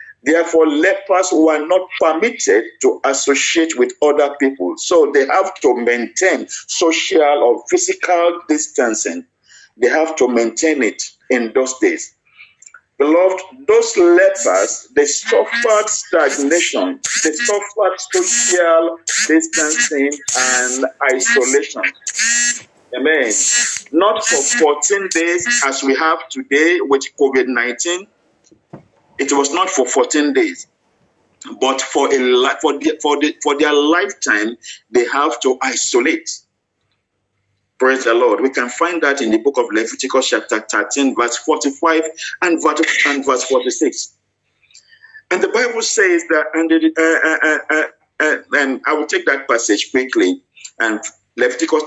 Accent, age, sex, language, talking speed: Nigerian, 50-69, male, English, 125 wpm